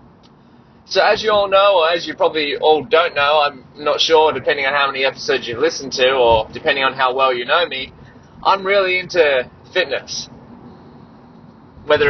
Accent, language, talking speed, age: Australian, English, 180 wpm, 20-39